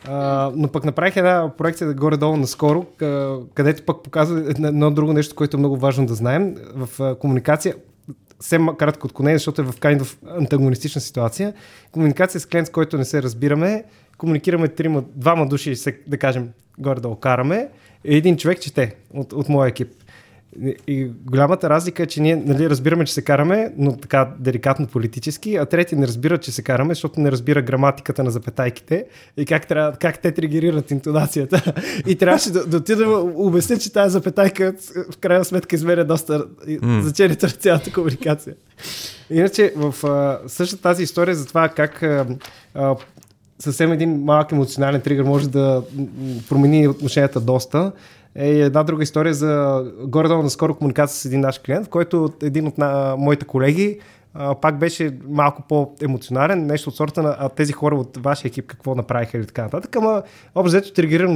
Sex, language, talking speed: male, Bulgarian, 160 wpm